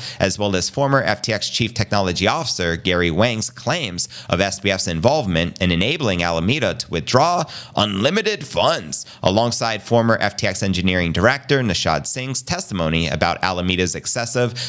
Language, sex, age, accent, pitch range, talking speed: English, male, 30-49, American, 95-130 Hz, 130 wpm